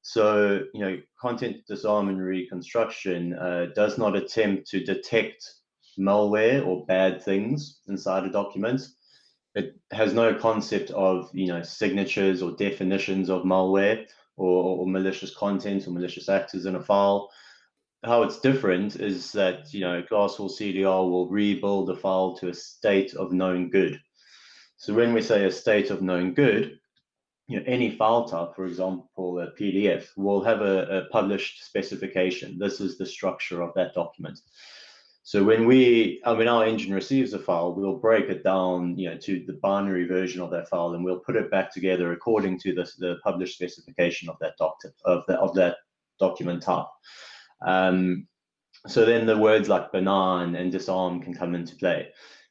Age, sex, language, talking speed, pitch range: 30-49, male, English, 170 wpm, 90-105 Hz